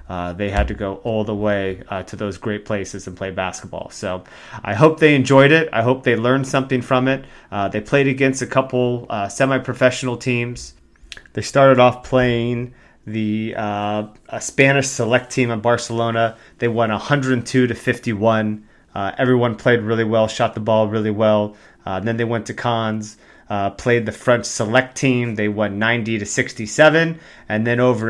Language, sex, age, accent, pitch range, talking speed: English, male, 30-49, American, 105-125 Hz, 180 wpm